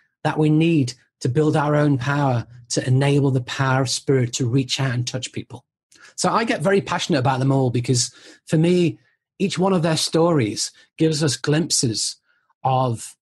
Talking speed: 180 wpm